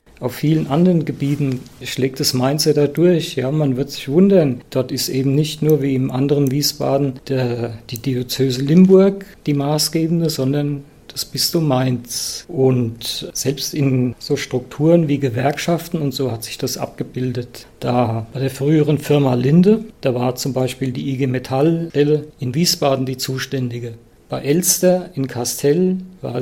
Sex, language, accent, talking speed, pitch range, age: male, German, German, 155 wpm, 130-150 Hz, 50-69